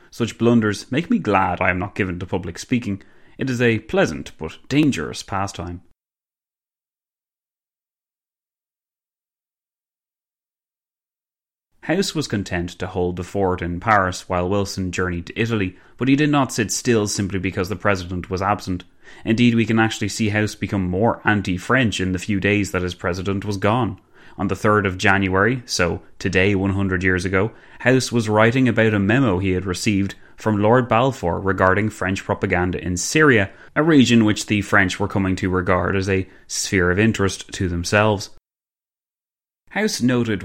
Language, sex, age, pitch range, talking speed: English, male, 30-49, 95-110 Hz, 160 wpm